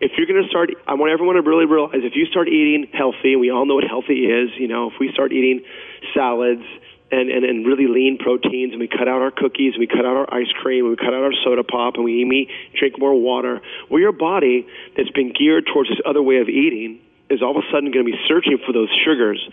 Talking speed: 265 wpm